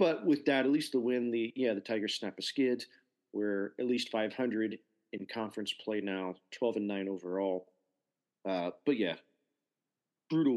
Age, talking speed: 40-59, 175 wpm